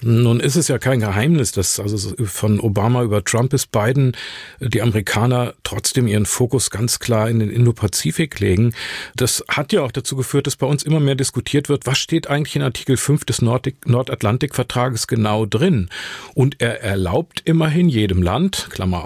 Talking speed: 175 wpm